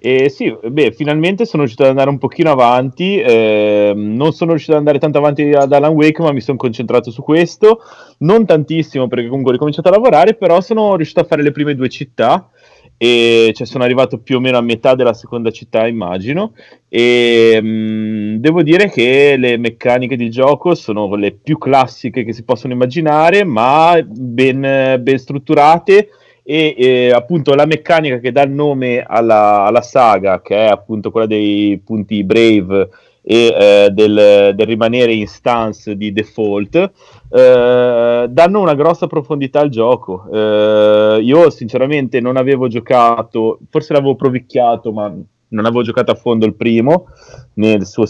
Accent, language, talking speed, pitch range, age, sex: native, Italian, 160 wpm, 115-150 Hz, 30-49, male